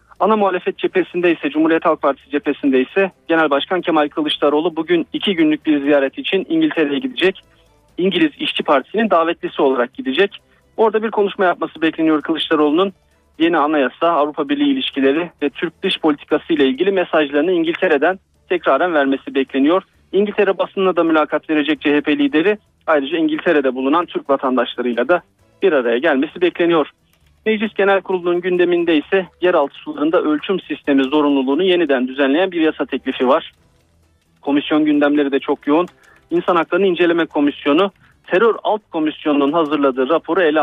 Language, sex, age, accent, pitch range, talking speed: Turkish, male, 40-59, native, 145-190 Hz, 140 wpm